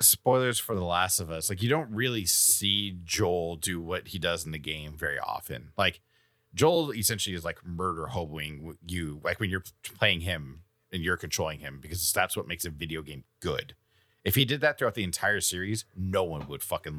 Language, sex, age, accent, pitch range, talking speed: English, male, 30-49, American, 90-110 Hz, 205 wpm